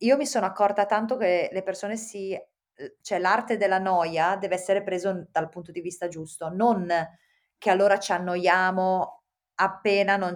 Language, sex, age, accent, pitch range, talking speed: Italian, female, 30-49, native, 180-225 Hz, 160 wpm